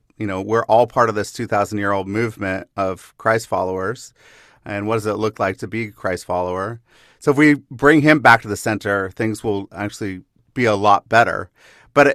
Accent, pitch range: American, 105-120 Hz